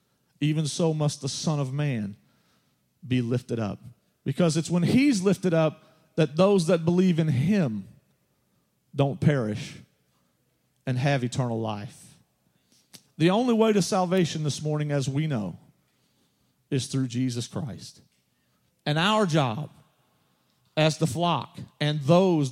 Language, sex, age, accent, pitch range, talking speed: English, male, 40-59, American, 130-165 Hz, 135 wpm